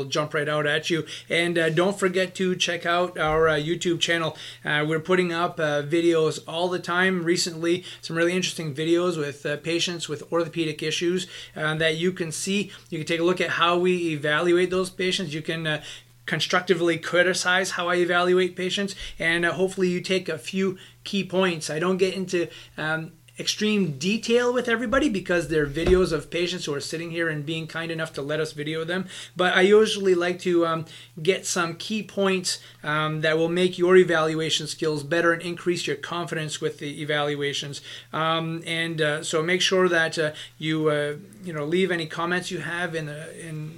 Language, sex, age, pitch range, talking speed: English, male, 30-49, 155-180 Hz, 195 wpm